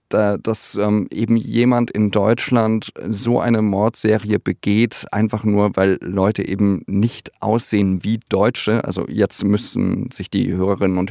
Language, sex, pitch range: German, male, 95-110 Hz